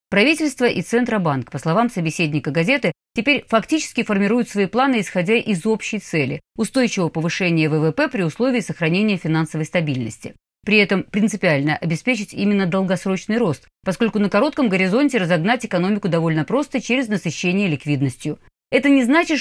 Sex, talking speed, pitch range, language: female, 140 wpm, 170-235 Hz, Russian